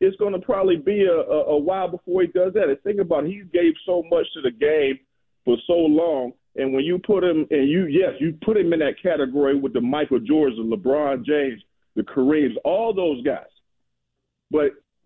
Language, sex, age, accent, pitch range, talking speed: English, male, 40-59, American, 160-215 Hz, 210 wpm